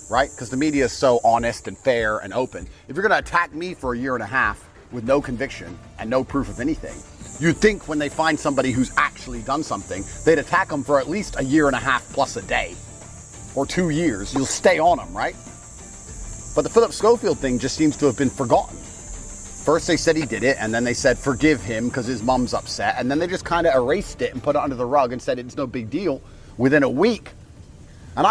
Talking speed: 240 wpm